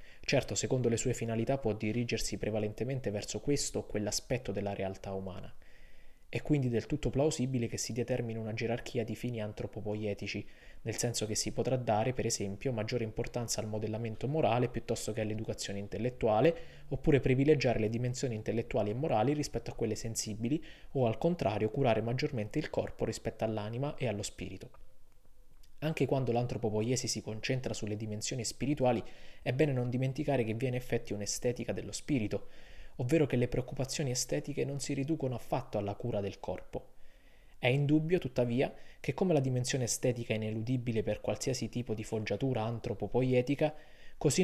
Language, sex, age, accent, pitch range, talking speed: Italian, male, 20-39, native, 110-130 Hz, 160 wpm